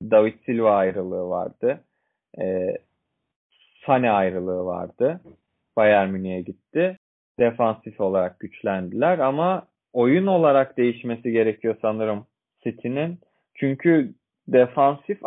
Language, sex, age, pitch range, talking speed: Turkish, male, 30-49, 105-145 Hz, 90 wpm